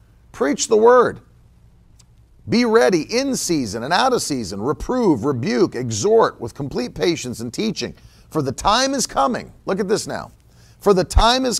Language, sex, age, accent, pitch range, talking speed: English, male, 50-69, American, 160-225 Hz, 165 wpm